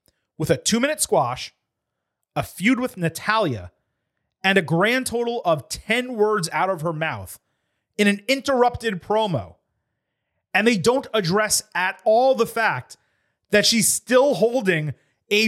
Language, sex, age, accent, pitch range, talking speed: English, male, 30-49, American, 145-215 Hz, 140 wpm